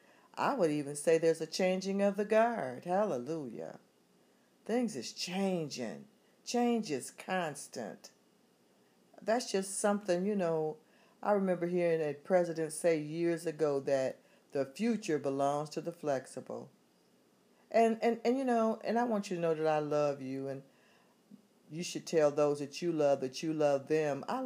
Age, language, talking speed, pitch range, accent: 50-69, English, 160 wpm, 150-190 Hz, American